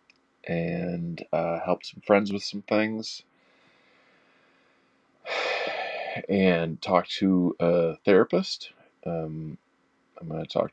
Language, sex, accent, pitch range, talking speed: English, male, American, 85-105 Hz, 100 wpm